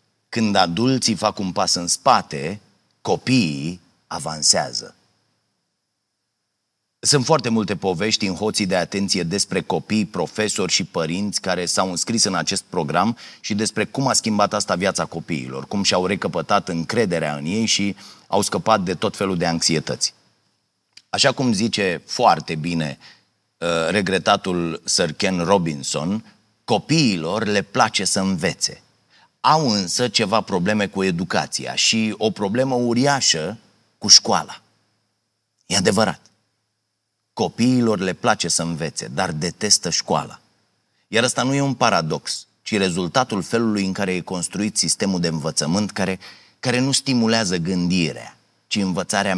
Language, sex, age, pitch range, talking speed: Romanian, male, 30-49, 90-110 Hz, 130 wpm